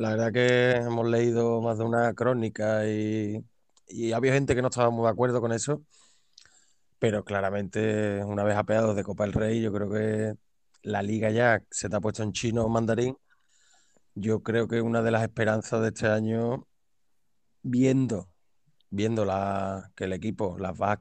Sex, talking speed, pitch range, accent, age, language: male, 175 wpm, 105-120 Hz, Spanish, 20-39, Spanish